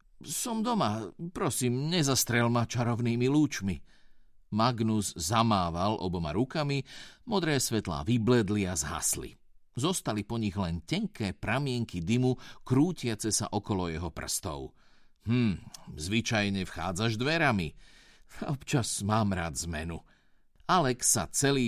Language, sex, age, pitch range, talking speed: Slovak, male, 50-69, 95-130 Hz, 110 wpm